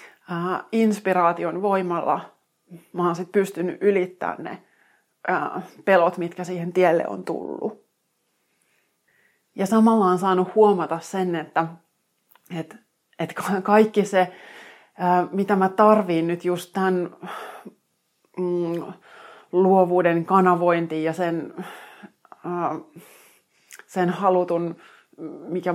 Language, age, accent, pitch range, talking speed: Finnish, 30-49, native, 165-190 Hz, 85 wpm